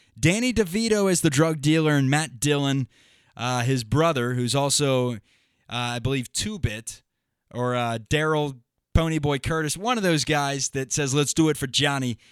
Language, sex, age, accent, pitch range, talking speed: English, male, 20-39, American, 125-165 Hz, 165 wpm